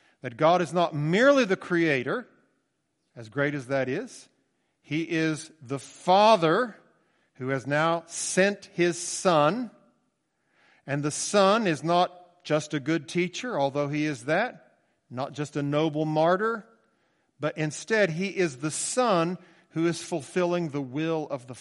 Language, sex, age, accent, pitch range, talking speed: English, male, 50-69, American, 135-190 Hz, 145 wpm